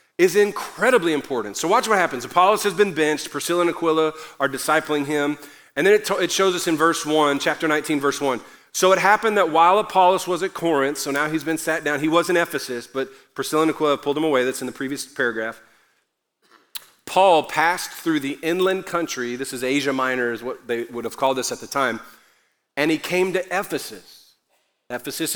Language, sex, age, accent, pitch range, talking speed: English, male, 40-59, American, 130-170 Hz, 205 wpm